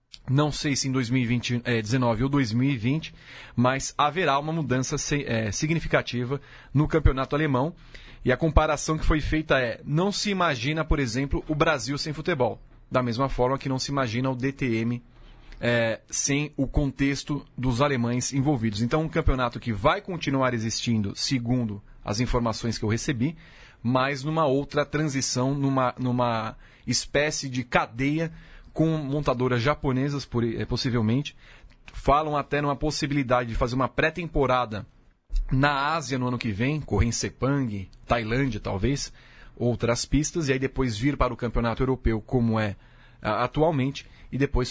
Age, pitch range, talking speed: 30-49, 120-145 Hz, 145 wpm